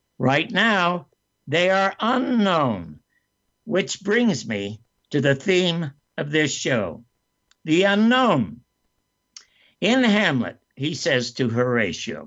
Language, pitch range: English, 130-180 Hz